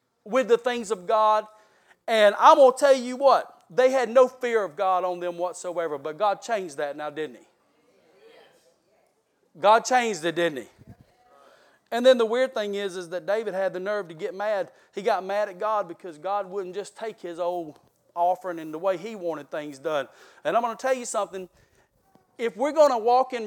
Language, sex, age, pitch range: English, male, 40-59, 180-245 Hz